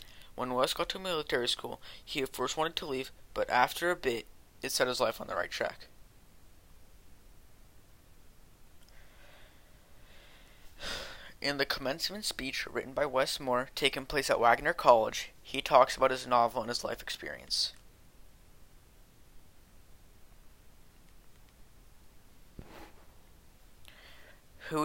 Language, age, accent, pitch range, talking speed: English, 20-39, American, 95-140 Hz, 115 wpm